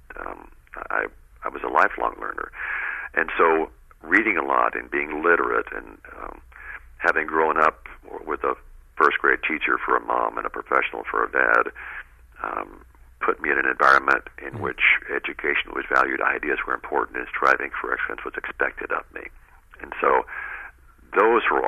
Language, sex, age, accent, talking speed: English, male, 60-79, American, 165 wpm